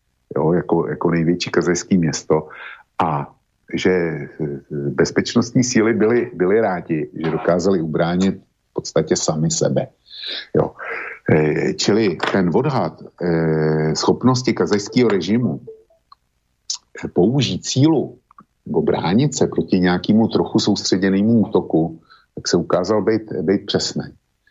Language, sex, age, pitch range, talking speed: Slovak, male, 50-69, 75-90 Hz, 100 wpm